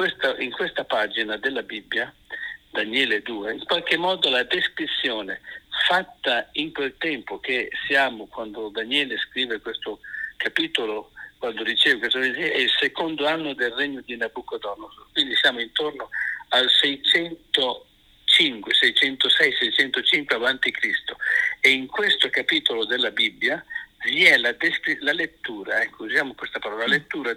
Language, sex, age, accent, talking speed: Italian, male, 60-79, native, 140 wpm